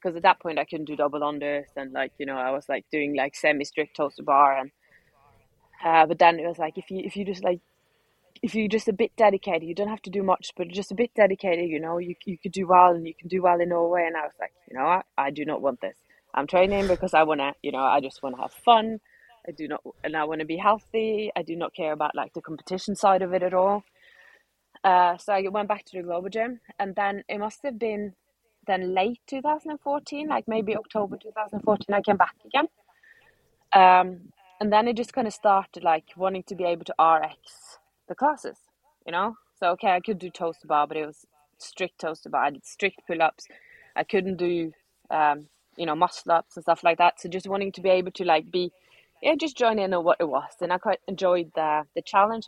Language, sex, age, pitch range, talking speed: English, female, 20-39, 165-210 Hz, 245 wpm